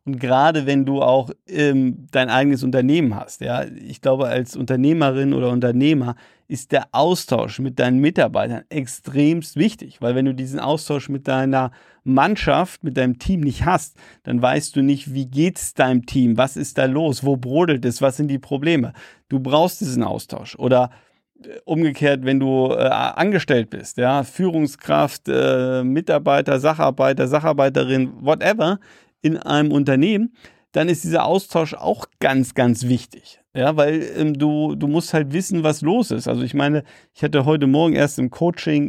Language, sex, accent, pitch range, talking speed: German, male, German, 130-155 Hz, 170 wpm